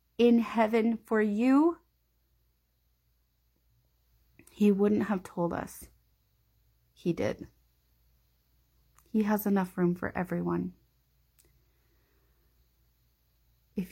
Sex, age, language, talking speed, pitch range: female, 30-49, English, 80 wpm, 175-210 Hz